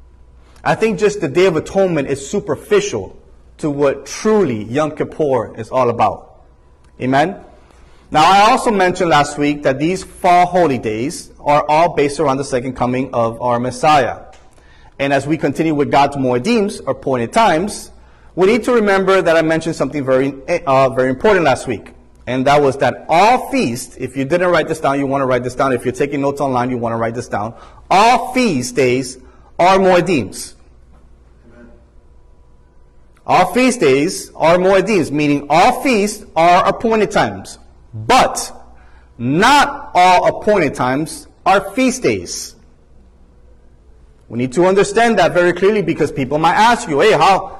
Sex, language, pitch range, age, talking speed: male, English, 120-190 Hz, 30-49, 165 wpm